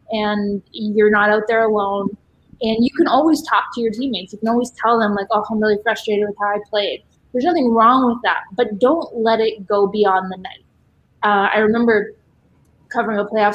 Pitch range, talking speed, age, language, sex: 200-225 Hz, 210 wpm, 20-39, English, female